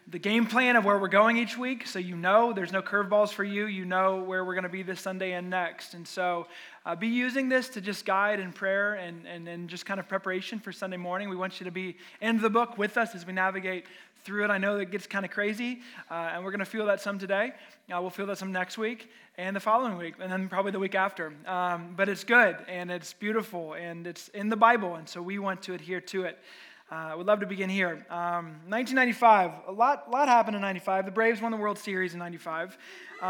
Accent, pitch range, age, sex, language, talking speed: American, 180-210 Hz, 20-39, male, English, 250 wpm